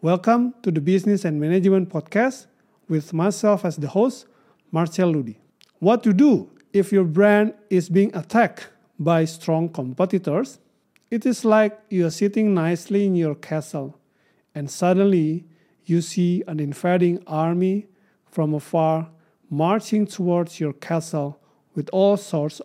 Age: 50-69